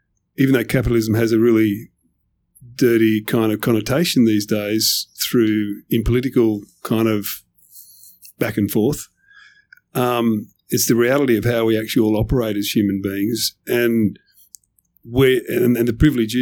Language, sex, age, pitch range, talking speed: English, male, 50-69, 105-120 Hz, 135 wpm